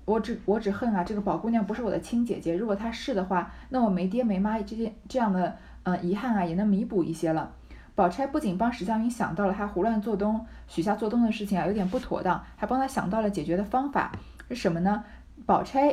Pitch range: 180-235 Hz